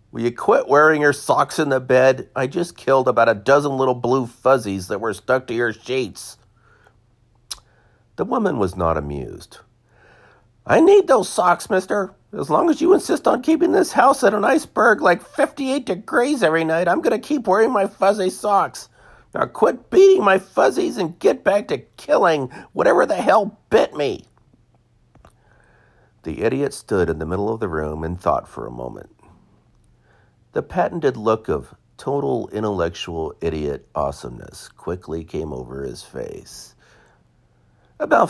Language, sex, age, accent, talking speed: English, male, 50-69, American, 160 wpm